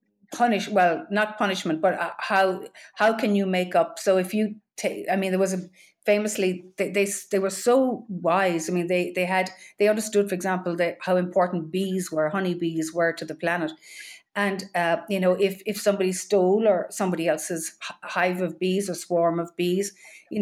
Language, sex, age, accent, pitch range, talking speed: English, female, 40-59, Irish, 170-210 Hz, 190 wpm